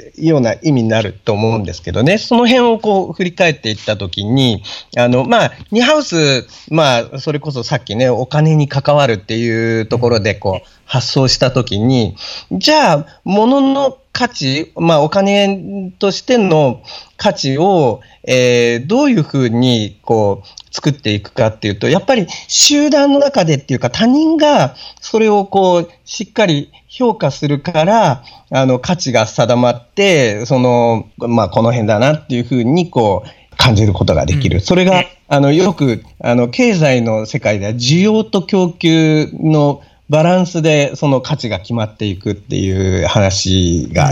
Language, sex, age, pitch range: Japanese, male, 40-59, 115-195 Hz